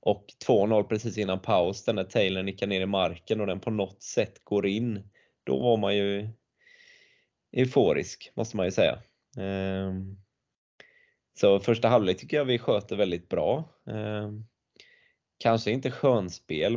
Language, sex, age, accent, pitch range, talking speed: Swedish, male, 20-39, native, 95-115 Hz, 145 wpm